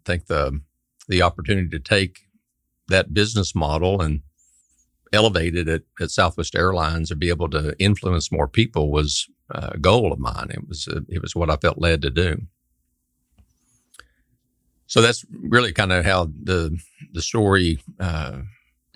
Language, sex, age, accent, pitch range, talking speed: English, male, 50-69, American, 80-100 Hz, 160 wpm